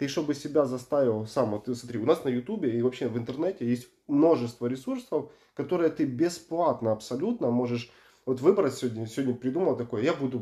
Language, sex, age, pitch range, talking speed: Russian, male, 20-39, 120-155 Hz, 185 wpm